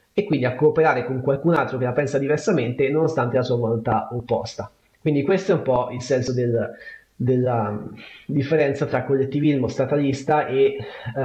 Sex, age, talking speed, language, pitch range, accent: male, 30-49, 155 wpm, Italian, 115-140 Hz, native